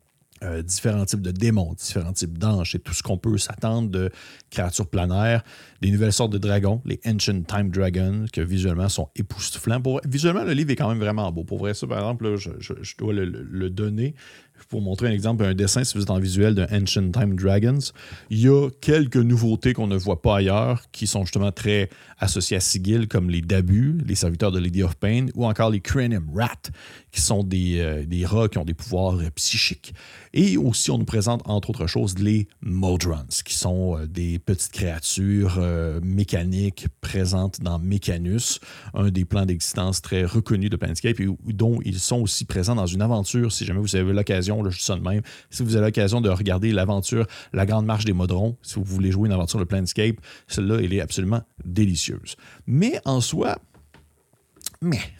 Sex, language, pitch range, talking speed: male, French, 95-115 Hz, 205 wpm